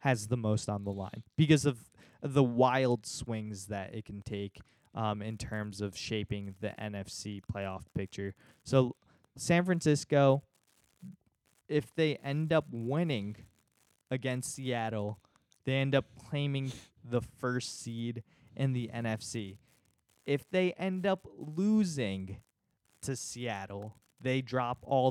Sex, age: male, 20-39